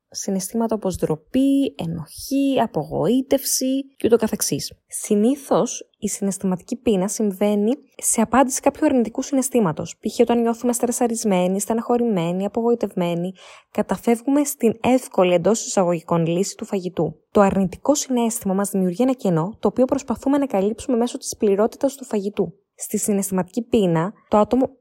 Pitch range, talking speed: 185-255 Hz, 125 wpm